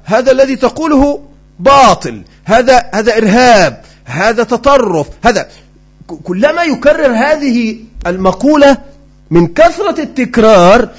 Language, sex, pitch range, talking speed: Arabic, male, 185-275 Hz, 95 wpm